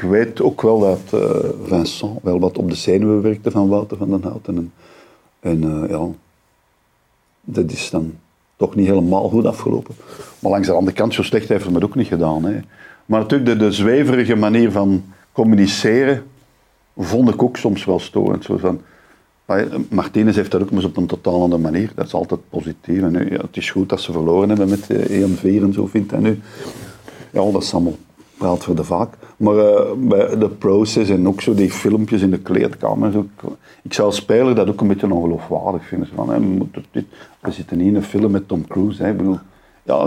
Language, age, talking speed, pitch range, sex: Dutch, 50-69, 210 wpm, 95-110 Hz, male